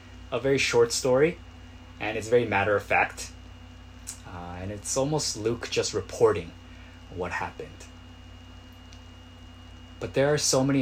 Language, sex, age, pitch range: Korean, male, 20-39, 85-95 Hz